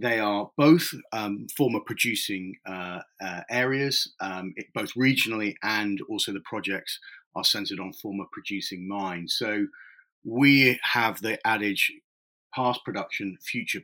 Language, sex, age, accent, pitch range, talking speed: English, male, 40-59, British, 95-125 Hz, 135 wpm